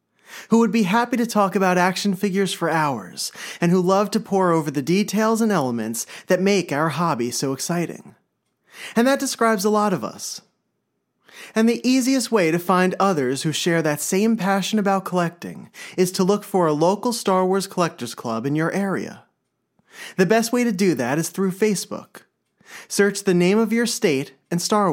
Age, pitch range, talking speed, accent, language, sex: 30-49, 170-225 Hz, 190 wpm, American, English, male